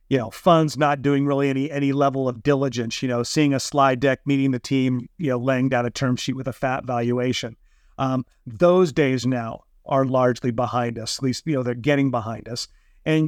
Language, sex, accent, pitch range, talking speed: English, male, American, 125-155 Hz, 215 wpm